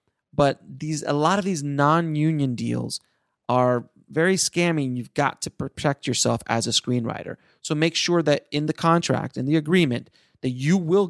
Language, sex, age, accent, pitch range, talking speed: English, male, 30-49, American, 130-160 Hz, 180 wpm